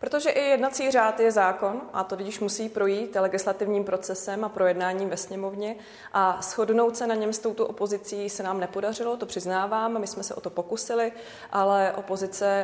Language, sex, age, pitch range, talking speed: Czech, female, 30-49, 180-205 Hz, 180 wpm